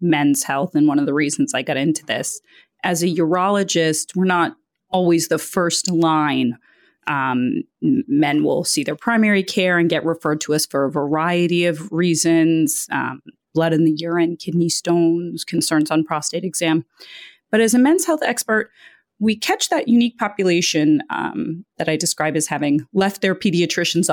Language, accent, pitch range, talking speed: English, American, 155-200 Hz, 170 wpm